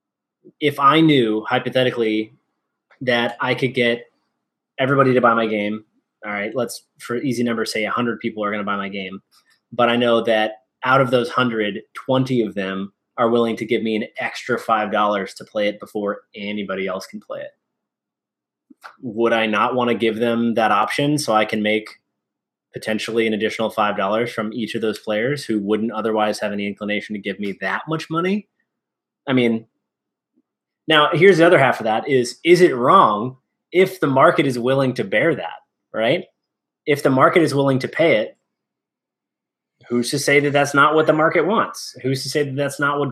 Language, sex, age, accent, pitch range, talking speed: English, male, 20-39, American, 110-135 Hz, 190 wpm